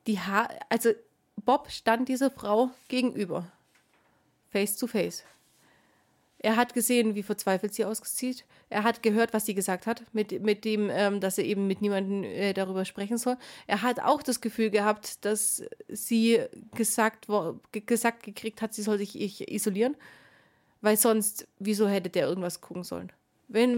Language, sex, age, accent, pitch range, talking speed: German, female, 30-49, German, 205-240 Hz, 165 wpm